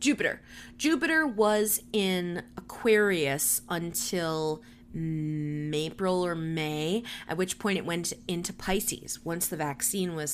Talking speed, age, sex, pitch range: 115 wpm, 20-39, female, 150-195 Hz